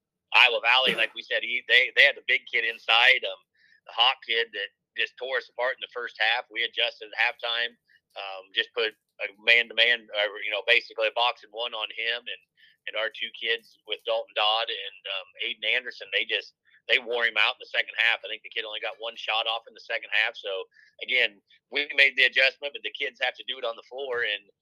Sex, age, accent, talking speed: male, 30-49, American, 240 wpm